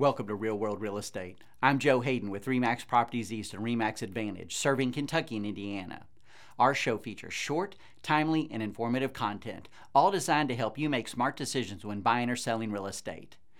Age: 50-69